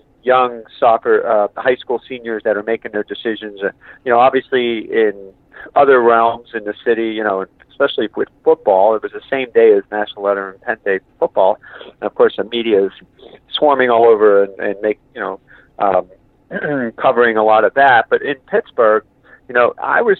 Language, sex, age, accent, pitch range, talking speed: English, male, 50-69, American, 100-125 Hz, 195 wpm